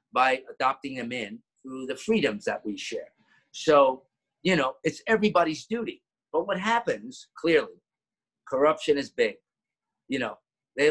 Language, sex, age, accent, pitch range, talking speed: English, male, 50-69, American, 130-185 Hz, 145 wpm